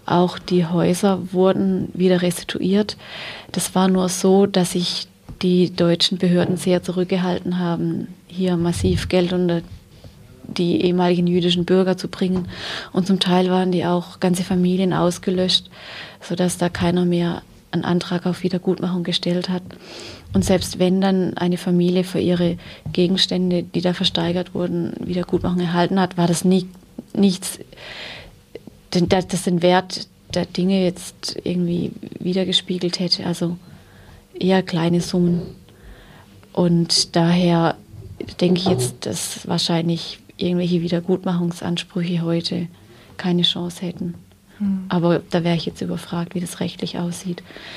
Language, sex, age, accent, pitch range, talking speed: German, female, 30-49, German, 175-185 Hz, 130 wpm